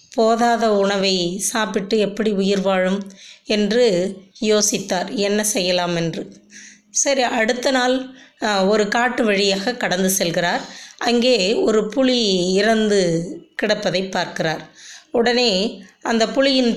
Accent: native